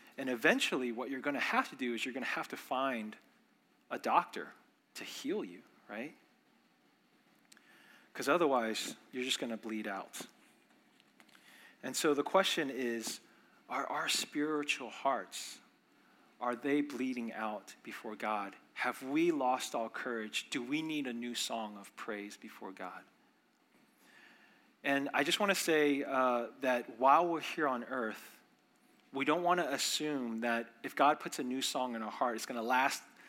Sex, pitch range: male, 115-145 Hz